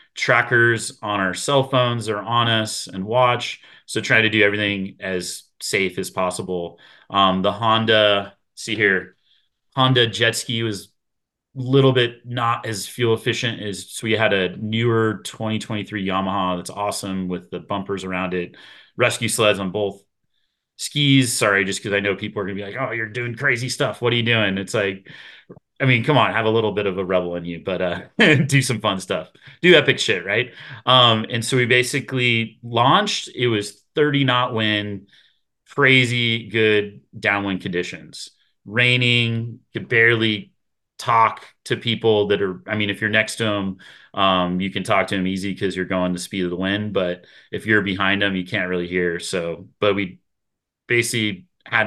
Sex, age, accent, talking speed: male, 30-49, American, 185 wpm